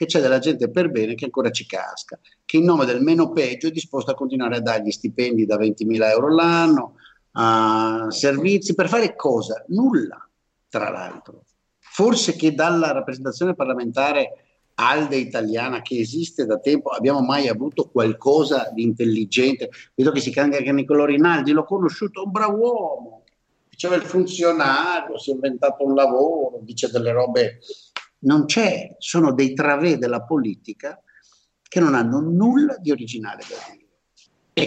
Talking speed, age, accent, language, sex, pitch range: 160 wpm, 50-69, native, Italian, male, 110-170 Hz